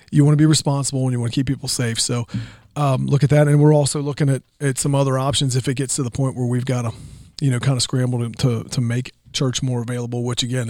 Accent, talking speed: American, 280 wpm